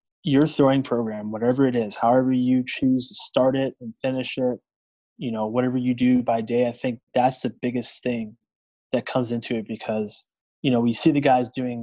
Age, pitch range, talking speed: 20-39, 115-135 Hz, 205 wpm